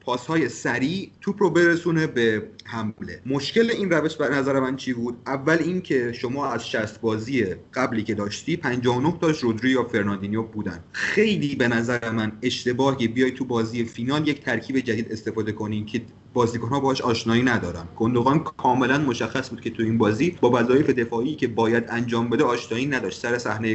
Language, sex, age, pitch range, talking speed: Persian, male, 30-49, 110-135 Hz, 180 wpm